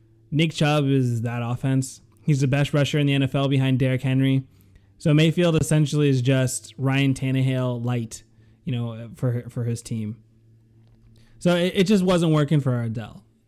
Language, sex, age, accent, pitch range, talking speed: English, male, 20-39, American, 115-155 Hz, 165 wpm